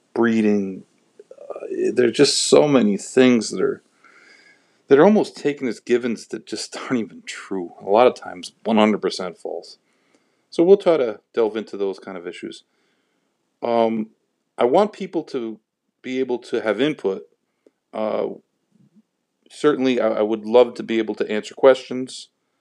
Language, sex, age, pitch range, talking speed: English, male, 40-59, 100-130 Hz, 155 wpm